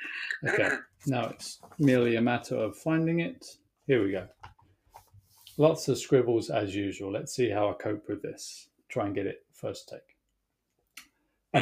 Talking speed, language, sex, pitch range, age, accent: 160 wpm, English, male, 120-145 Hz, 40-59, British